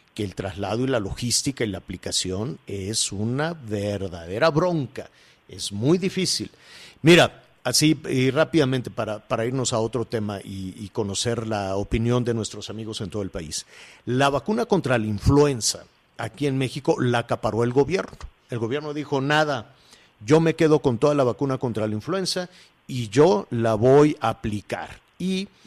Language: Spanish